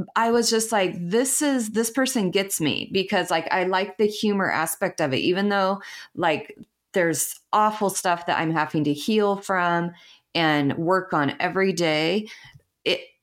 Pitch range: 155-210 Hz